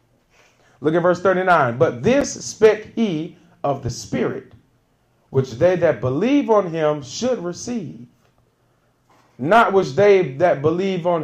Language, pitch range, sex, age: English, 130-185 Hz, male, 40-59